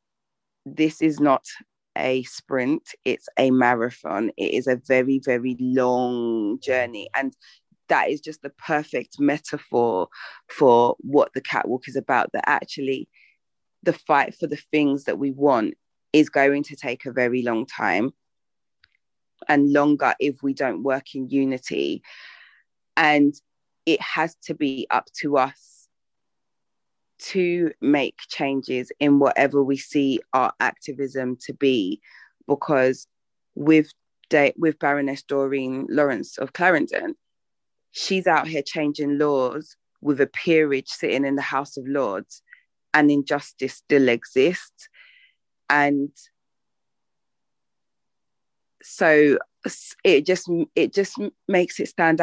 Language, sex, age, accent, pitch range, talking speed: English, female, 20-39, British, 135-155 Hz, 125 wpm